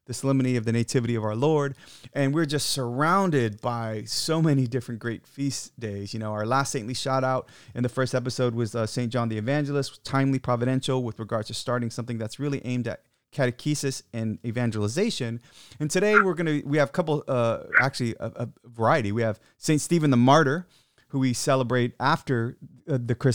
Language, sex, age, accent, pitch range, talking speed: English, male, 30-49, American, 115-135 Hz, 195 wpm